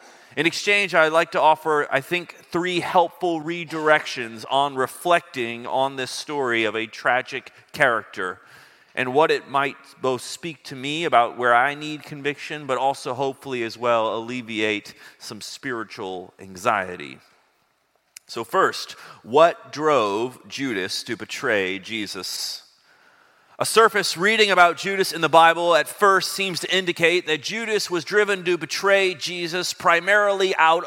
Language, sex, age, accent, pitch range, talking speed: English, male, 30-49, American, 135-185 Hz, 140 wpm